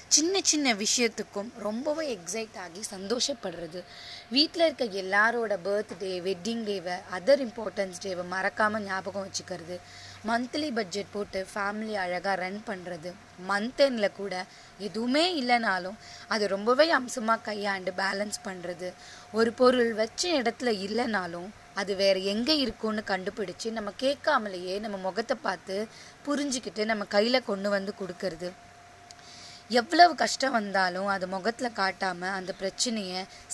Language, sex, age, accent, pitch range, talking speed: Tamil, female, 20-39, native, 190-240 Hz, 120 wpm